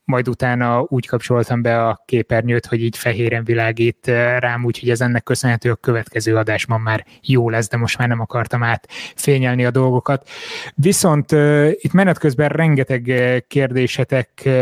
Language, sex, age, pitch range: Hungarian, male, 20-39, 125-150 Hz